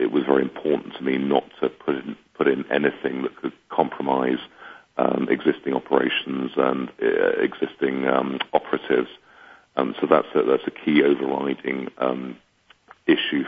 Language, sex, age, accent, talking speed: English, male, 50-69, British, 150 wpm